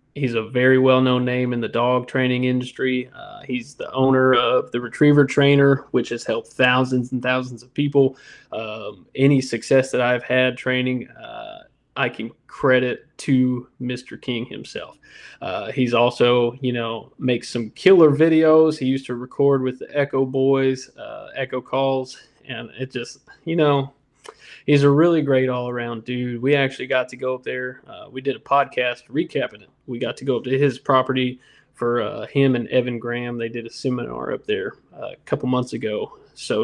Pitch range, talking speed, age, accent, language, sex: 125-140 Hz, 180 wpm, 20-39, American, English, male